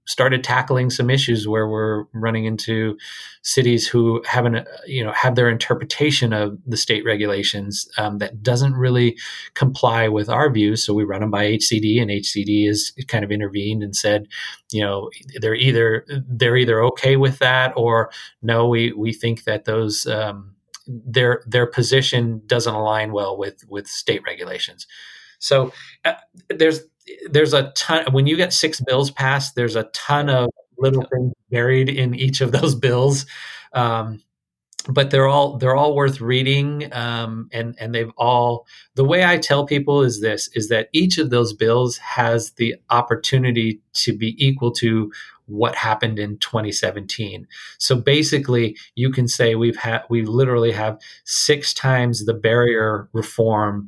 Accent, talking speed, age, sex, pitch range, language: American, 160 wpm, 30-49, male, 110-130 Hz, English